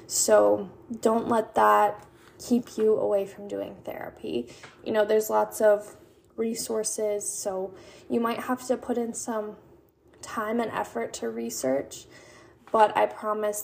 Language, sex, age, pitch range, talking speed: English, female, 10-29, 205-235 Hz, 140 wpm